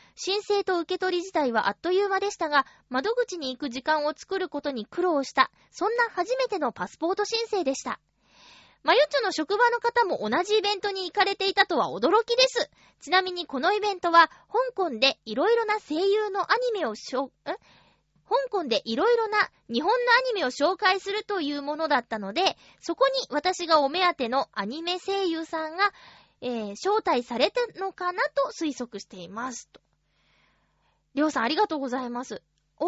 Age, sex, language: 20-39, female, Japanese